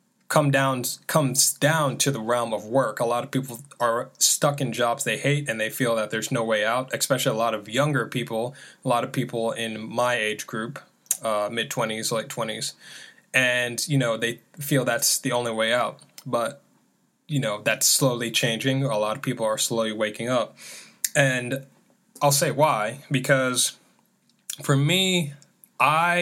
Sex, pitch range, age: male, 115-145 Hz, 10-29